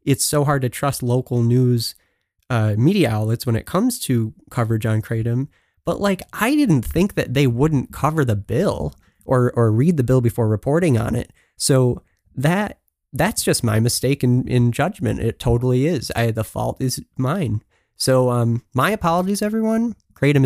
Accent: American